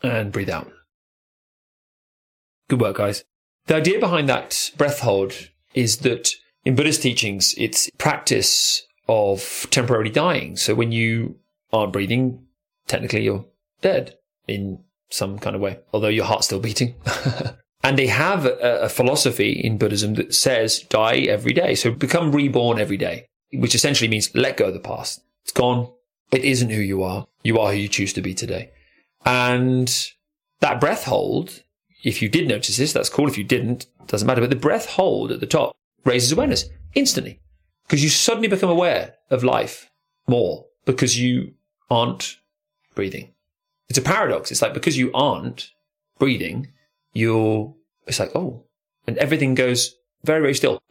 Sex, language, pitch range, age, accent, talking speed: male, English, 110-150 Hz, 30-49, British, 165 wpm